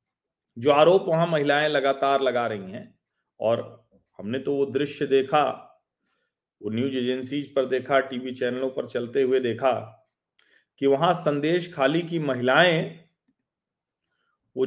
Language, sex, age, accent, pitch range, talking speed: Hindi, male, 40-59, native, 120-155 Hz, 125 wpm